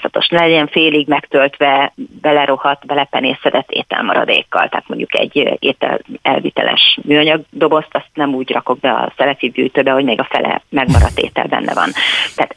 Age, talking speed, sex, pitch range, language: 40-59, 140 wpm, female, 140-155 Hz, Hungarian